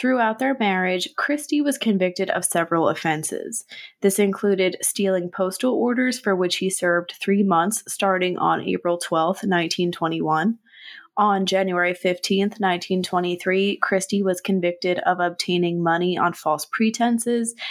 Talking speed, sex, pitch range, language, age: 130 wpm, female, 175-210 Hz, English, 20-39